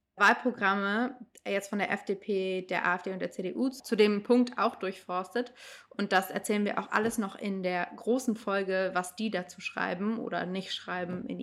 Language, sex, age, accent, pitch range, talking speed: German, female, 20-39, German, 190-230 Hz, 180 wpm